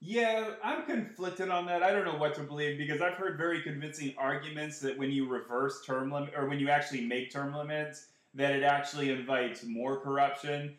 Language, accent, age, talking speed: English, American, 30-49, 200 wpm